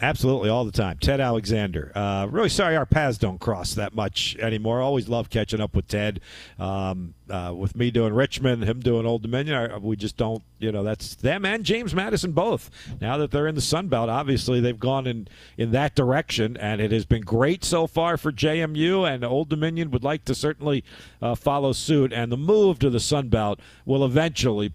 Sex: male